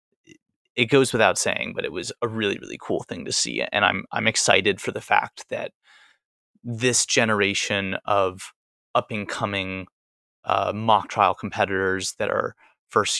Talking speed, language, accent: 160 wpm, English, American